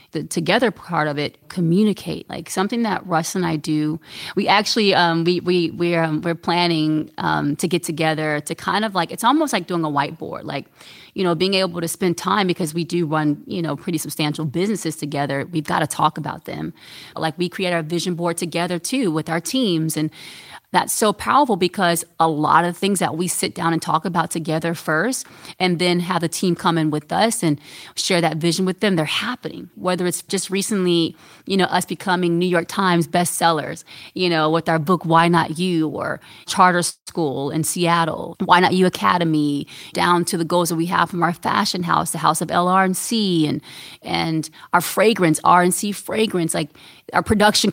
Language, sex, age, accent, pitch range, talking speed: English, female, 30-49, American, 160-185 Hz, 205 wpm